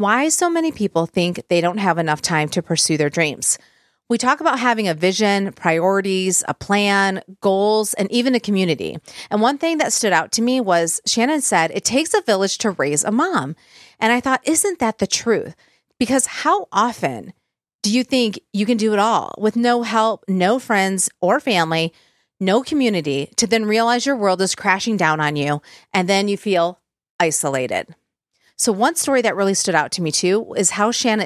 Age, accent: 40-59, American